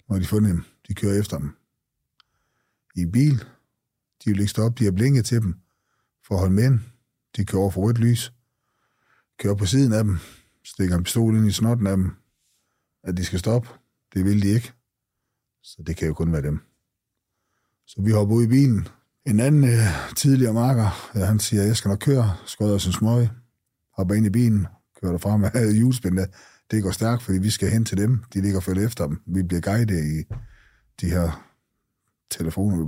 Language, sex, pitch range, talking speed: Danish, male, 90-115 Hz, 195 wpm